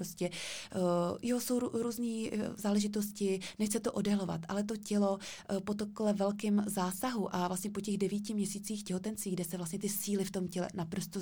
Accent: native